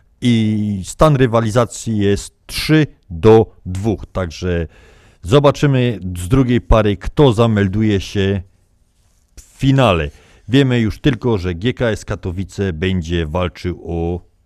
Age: 50-69